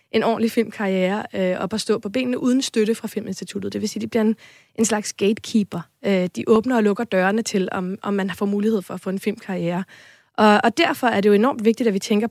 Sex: female